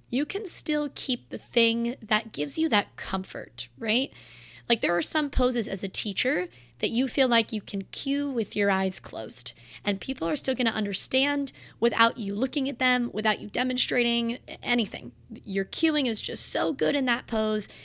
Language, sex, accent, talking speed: English, female, American, 190 wpm